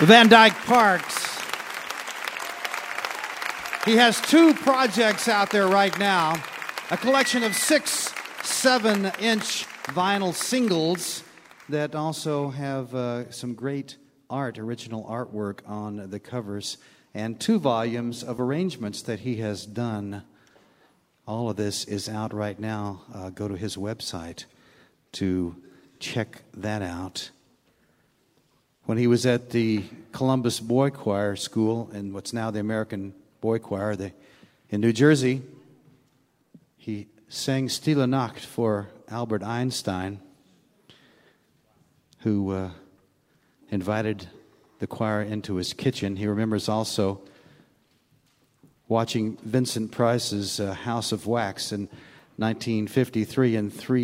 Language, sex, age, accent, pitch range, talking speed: English, male, 50-69, American, 100-135 Hz, 110 wpm